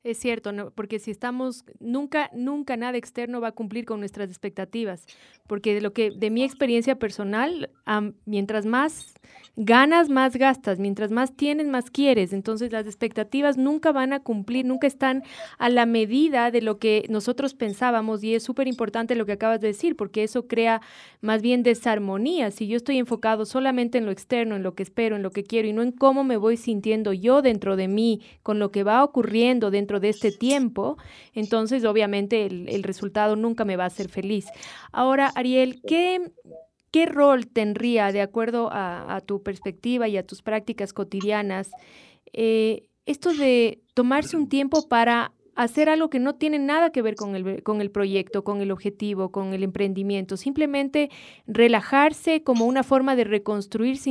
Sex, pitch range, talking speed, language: female, 210-260 Hz, 180 wpm, Spanish